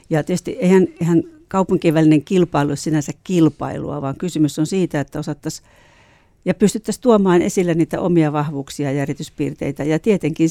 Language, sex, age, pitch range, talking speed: Finnish, female, 60-79, 145-180 Hz, 145 wpm